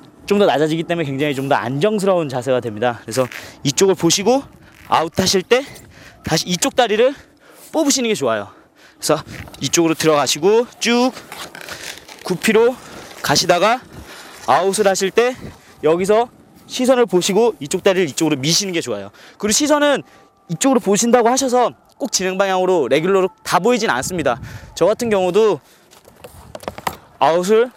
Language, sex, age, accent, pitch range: Korean, male, 20-39, native, 170-245 Hz